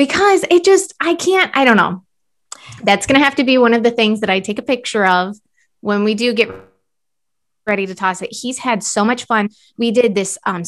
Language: English